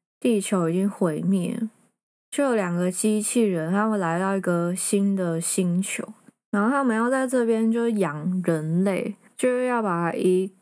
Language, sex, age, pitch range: Chinese, female, 20-39, 185-230 Hz